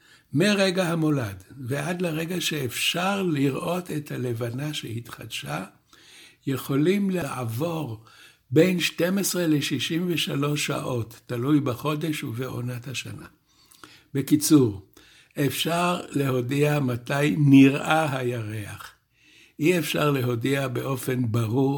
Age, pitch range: 60-79, 120-150 Hz